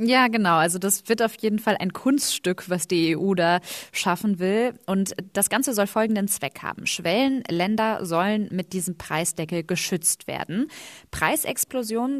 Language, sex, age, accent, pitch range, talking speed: German, female, 20-39, German, 175-230 Hz, 150 wpm